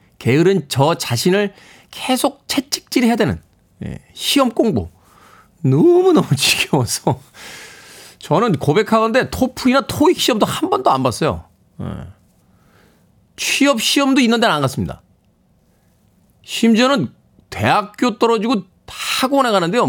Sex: male